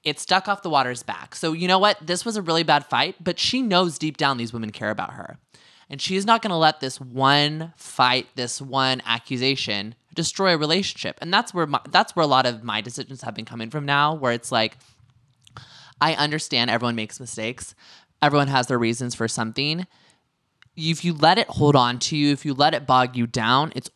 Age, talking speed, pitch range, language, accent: 20-39, 220 wpm, 120-155 Hz, English, American